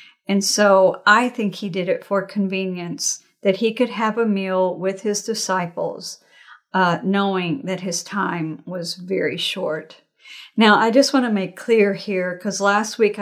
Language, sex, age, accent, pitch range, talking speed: English, female, 50-69, American, 185-215 Hz, 170 wpm